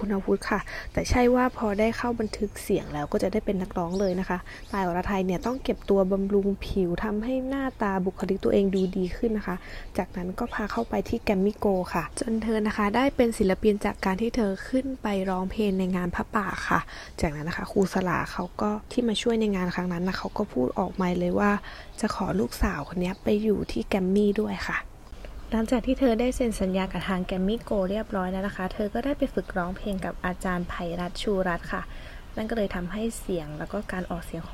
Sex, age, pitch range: female, 20-39, 180-220 Hz